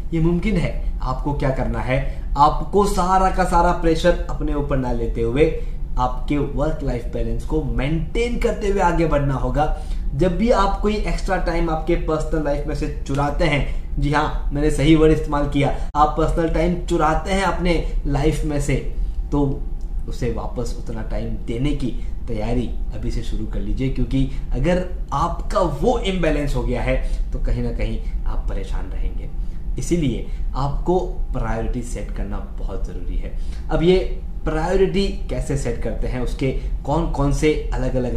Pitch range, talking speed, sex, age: 125-170 Hz, 165 wpm, male, 20-39